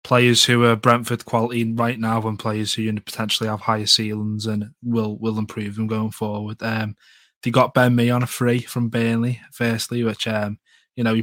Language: English